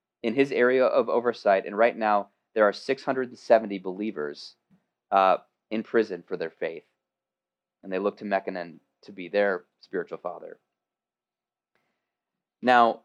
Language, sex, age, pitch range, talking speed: English, male, 20-39, 100-125 Hz, 135 wpm